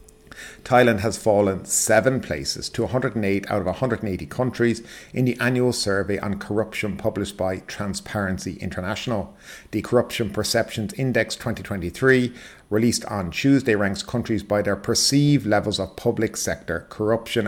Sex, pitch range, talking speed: male, 100-115 Hz, 135 wpm